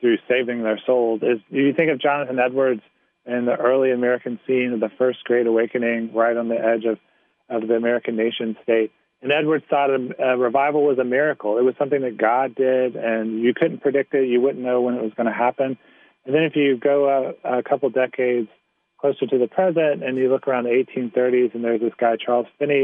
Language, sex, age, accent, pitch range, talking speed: English, male, 30-49, American, 120-140 Hz, 220 wpm